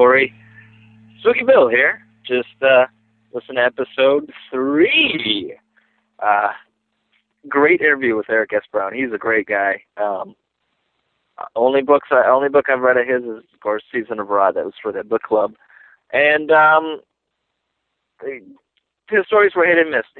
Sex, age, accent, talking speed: male, 30-49, American, 155 wpm